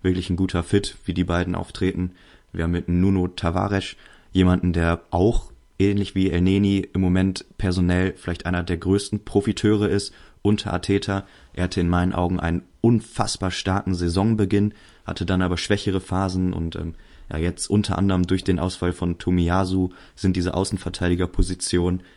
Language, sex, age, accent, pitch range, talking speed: German, male, 20-39, German, 85-95 Hz, 160 wpm